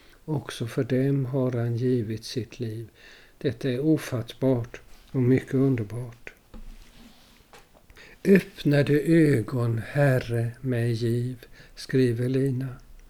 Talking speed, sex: 95 wpm, male